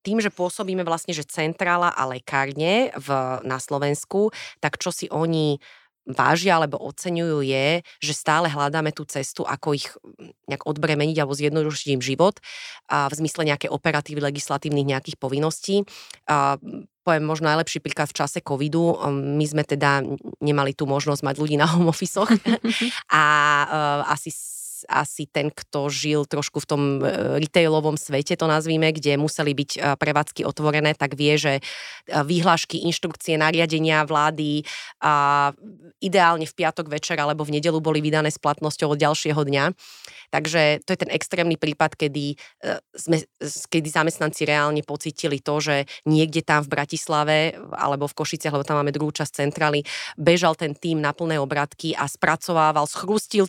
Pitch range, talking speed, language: 145-165 Hz, 150 wpm, Slovak